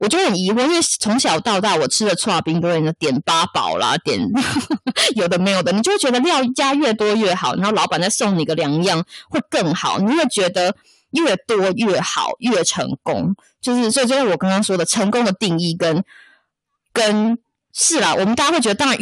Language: Chinese